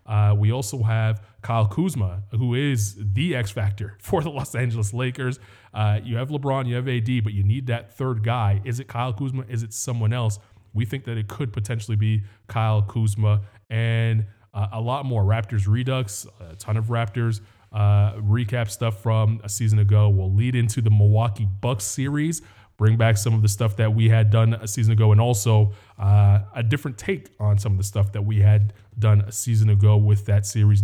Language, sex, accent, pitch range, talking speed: English, male, American, 105-120 Hz, 200 wpm